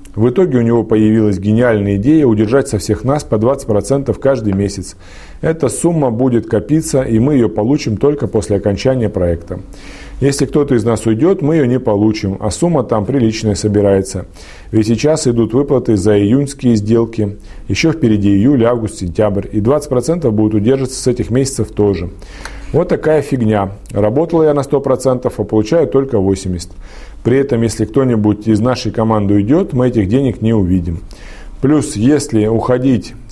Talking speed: 160 wpm